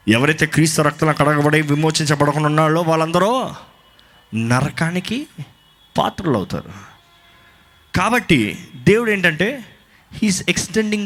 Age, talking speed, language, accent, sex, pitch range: 20-39, 80 wpm, Telugu, native, male, 125-205 Hz